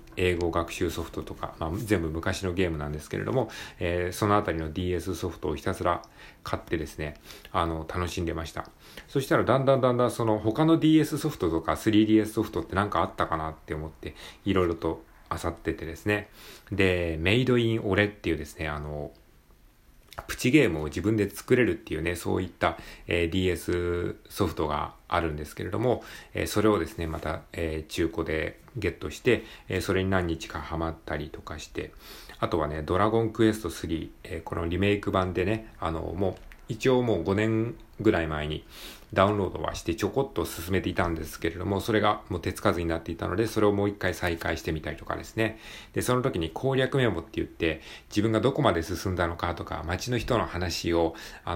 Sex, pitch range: male, 80-105 Hz